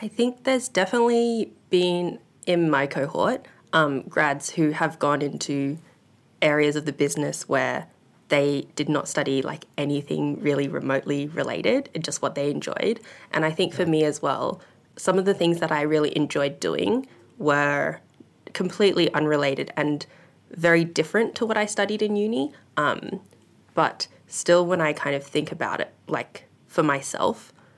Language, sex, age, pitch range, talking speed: English, female, 20-39, 145-185 Hz, 160 wpm